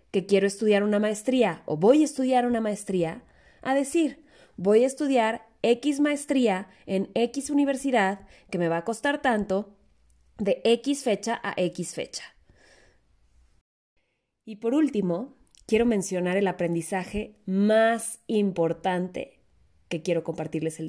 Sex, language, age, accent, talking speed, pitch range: female, Spanish, 20-39, Mexican, 130 wpm, 185-245 Hz